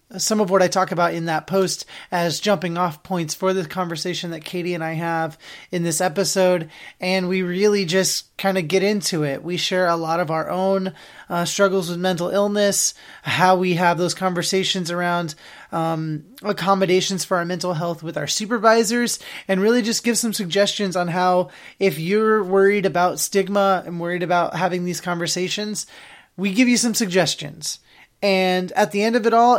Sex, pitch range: male, 175-215 Hz